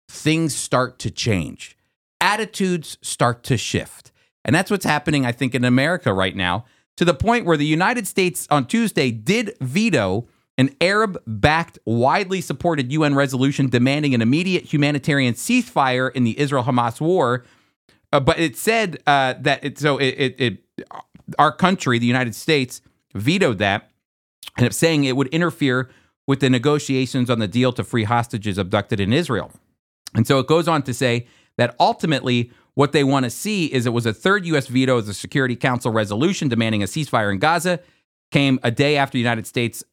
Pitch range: 115-155 Hz